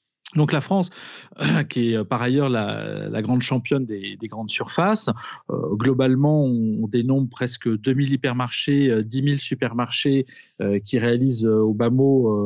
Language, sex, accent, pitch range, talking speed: French, male, French, 110-140 Hz, 155 wpm